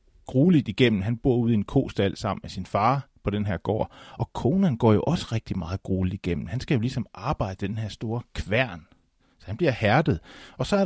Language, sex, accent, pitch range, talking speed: Danish, male, native, 100-135 Hz, 225 wpm